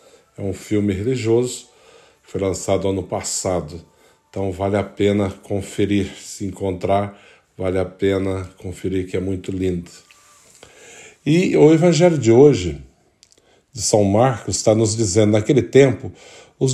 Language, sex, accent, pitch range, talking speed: Portuguese, male, Brazilian, 105-140 Hz, 135 wpm